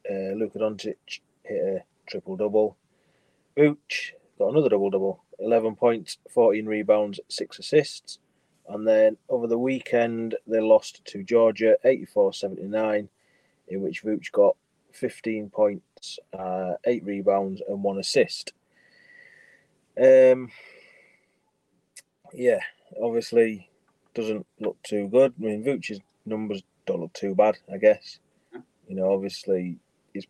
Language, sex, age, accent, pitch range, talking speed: English, male, 30-49, British, 95-120 Hz, 115 wpm